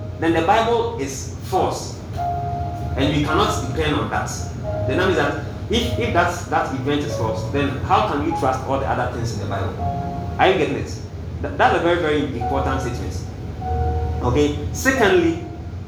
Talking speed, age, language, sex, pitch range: 170 wpm, 30-49, English, male, 100-135 Hz